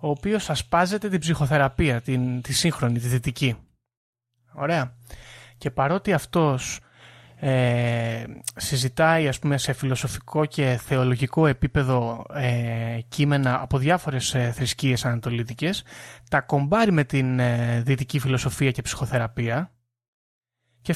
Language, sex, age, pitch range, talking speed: Greek, male, 20-39, 120-160 Hz, 110 wpm